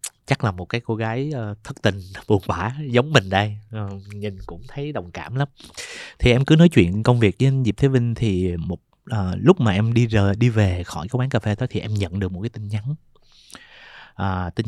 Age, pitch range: 20-39, 100-135 Hz